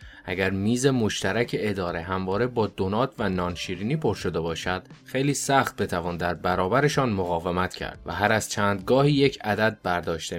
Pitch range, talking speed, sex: 90-110 Hz, 160 wpm, male